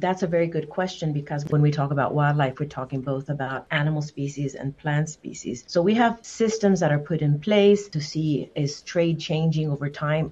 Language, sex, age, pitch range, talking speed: English, female, 40-59, 140-165 Hz, 210 wpm